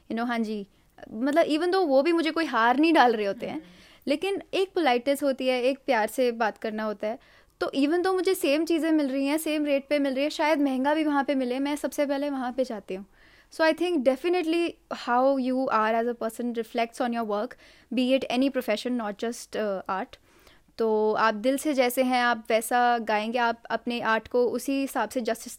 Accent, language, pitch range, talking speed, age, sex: native, Hindi, 220-270 Hz, 220 wpm, 20-39, female